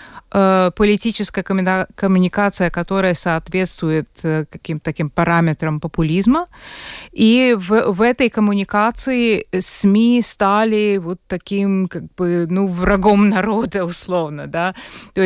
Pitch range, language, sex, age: 175-225 Hz, Russian, female, 30-49